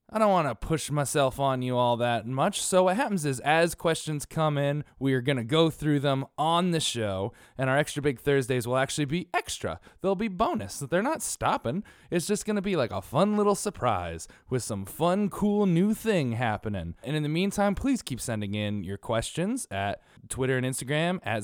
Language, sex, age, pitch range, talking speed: English, male, 20-39, 115-175 Hz, 215 wpm